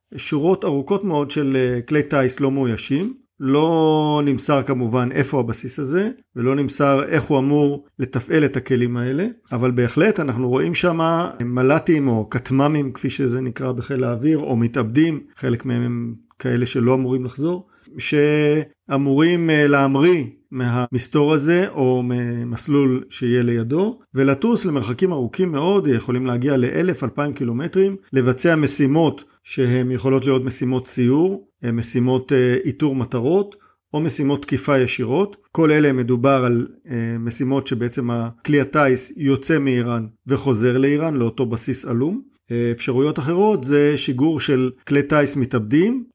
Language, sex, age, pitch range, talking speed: Hebrew, male, 50-69, 125-150 Hz, 130 wpm